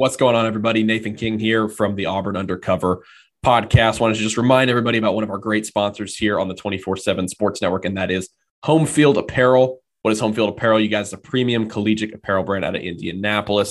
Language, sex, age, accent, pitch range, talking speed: English, male, 20-39, American, 95-110 Hz, 225 wpm